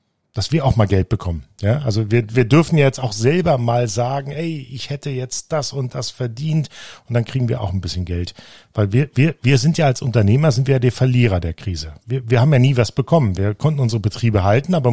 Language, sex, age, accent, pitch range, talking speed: German, male, 40-59, German, 110-135 Hz, 245 wpm